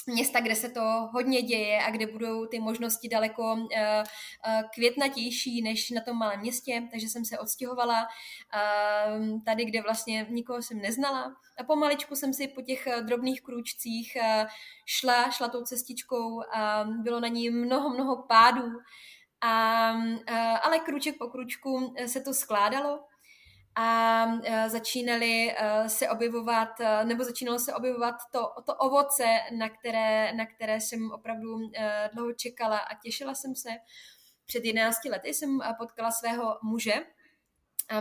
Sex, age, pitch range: female, 20-39, 225-245 Hz